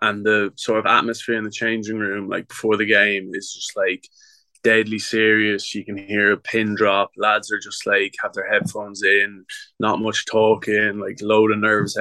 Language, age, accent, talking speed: English, 20-39, Irish, 195 wpm